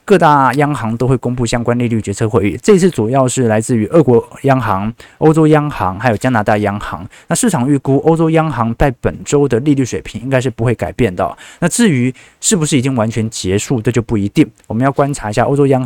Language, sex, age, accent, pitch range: Chinese, male, 20-39, native, 110-150 Hz